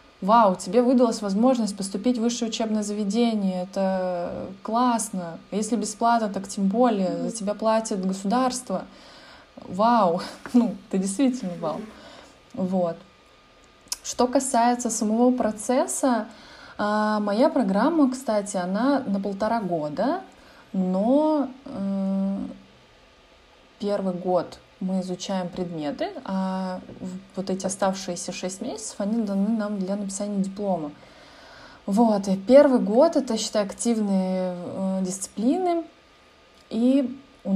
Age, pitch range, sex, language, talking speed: 20-39, 185-235 Hz, female, Russian, 105 wpm